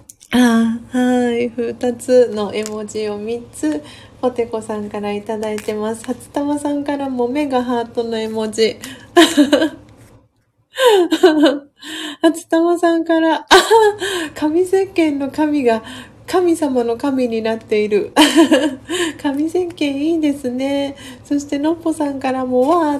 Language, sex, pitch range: Japanese, female, 230-305 Hz